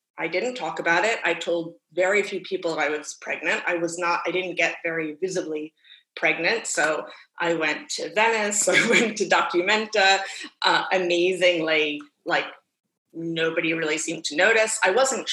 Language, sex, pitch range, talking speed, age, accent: English, female, 170-225 Hz, 165 wpm, 30-49, American